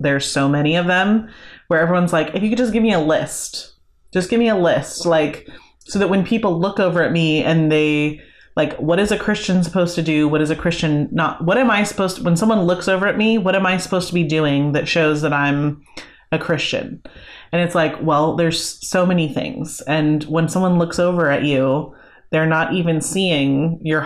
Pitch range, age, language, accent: 160-210 Hz, 30-49, English, American